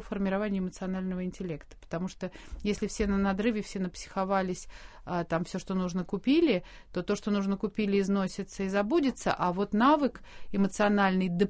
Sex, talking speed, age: female, 145 wpm, 30-49